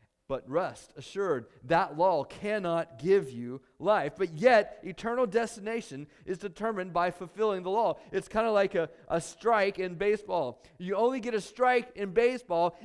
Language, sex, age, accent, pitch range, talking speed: English, male, 40-59, American, 140-210 Hz, 160 wpm